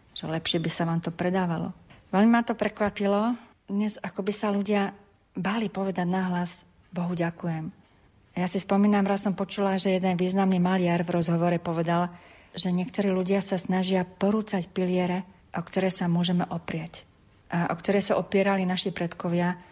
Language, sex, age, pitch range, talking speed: Slovak, female, 40-59, 175-195 Hz, 160 wpm